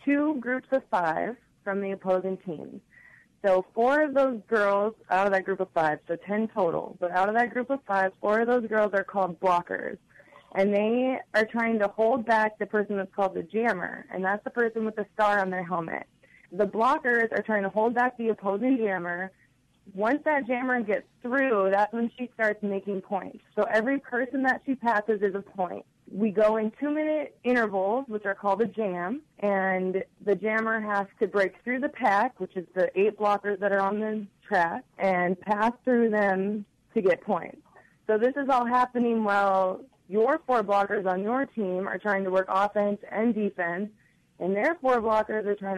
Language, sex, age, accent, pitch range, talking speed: English, female, 20-39, American, 195-235 Hz, 195 wpm